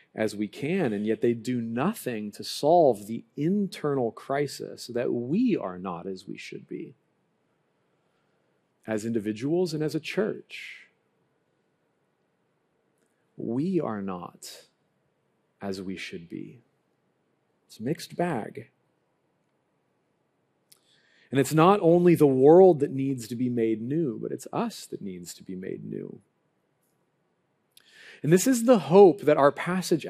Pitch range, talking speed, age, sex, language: 140-205 Hz, 135 wpm, 40-59, male, English